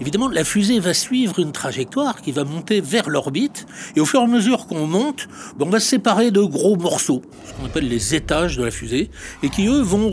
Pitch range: 135-215 Hz